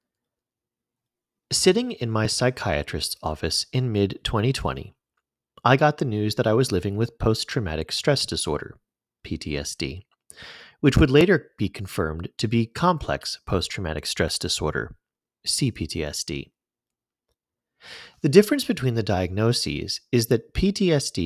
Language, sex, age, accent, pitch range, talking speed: English, male, 30-49, American, 85-115 Hz, 115 wpm